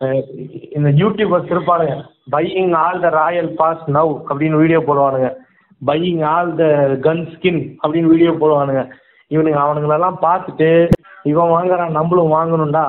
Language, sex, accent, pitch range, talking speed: Tamil, male, native, 150-170 Hz, 125 wpm